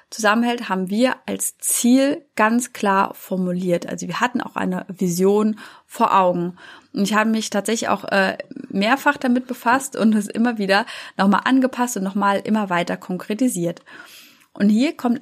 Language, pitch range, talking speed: German, 190-255 Hz, 155 wpm